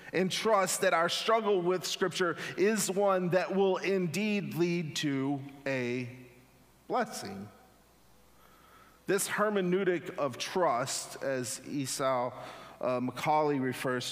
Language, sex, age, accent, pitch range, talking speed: English, male, 40-59, American, 140-185 Hz, 105 wpm